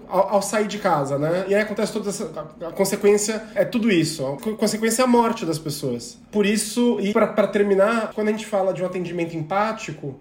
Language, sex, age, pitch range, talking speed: Portuguese, male, 20-39, 155-215 Hz, 205 wpm